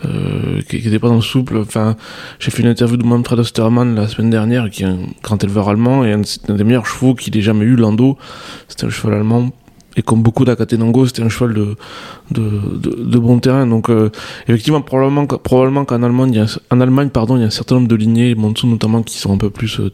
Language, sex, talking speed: French, male, 250 wpm